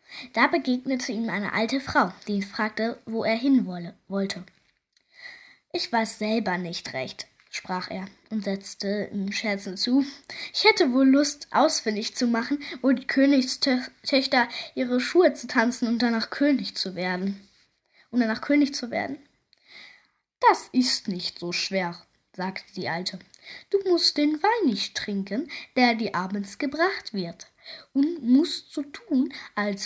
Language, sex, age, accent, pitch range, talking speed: German, female, 10-29, German, 205-290 Hz, 155 wpm